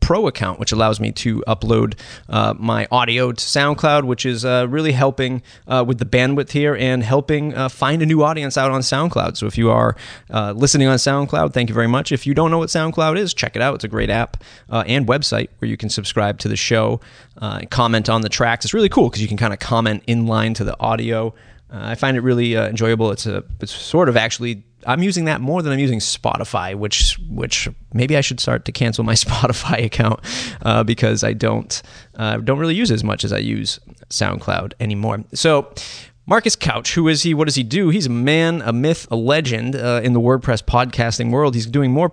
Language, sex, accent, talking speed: English, male, American, 230 wpm